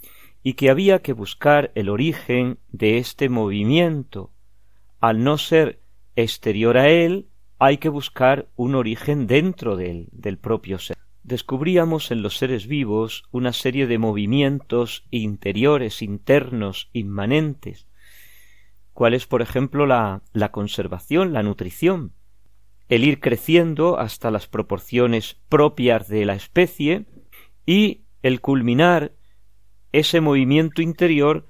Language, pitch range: Spanish, 100-140 Hz